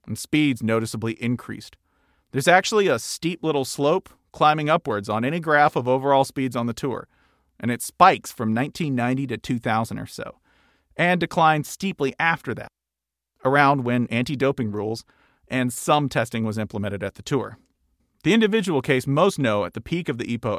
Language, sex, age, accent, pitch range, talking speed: English, male, 40-59, American, 110-145 Hz, 170 wpm